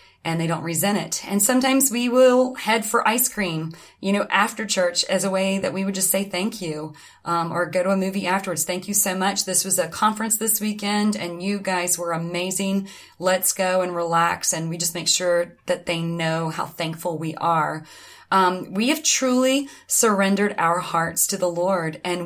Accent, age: American, 30-49